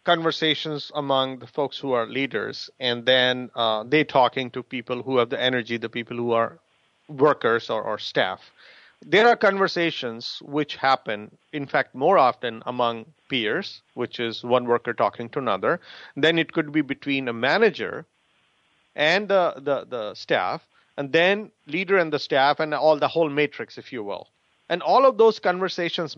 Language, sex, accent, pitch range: English, male, Indian, 125-165 Hz